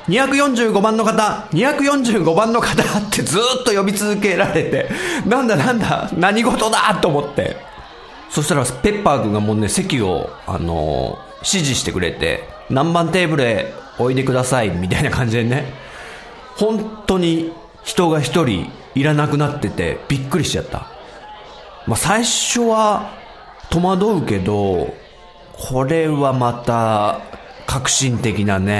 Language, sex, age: Japanese, male, 40-59